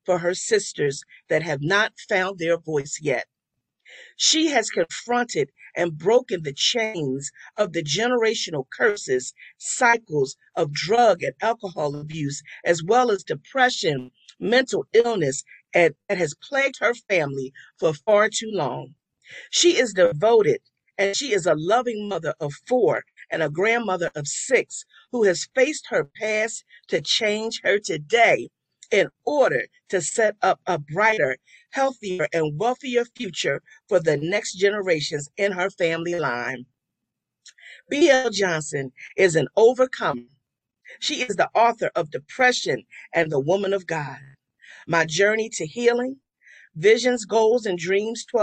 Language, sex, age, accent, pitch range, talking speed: English, female, 50-69, American, 165-245 Hz, 140 wpm